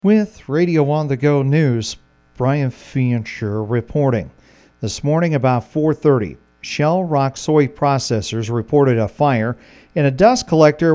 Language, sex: English, male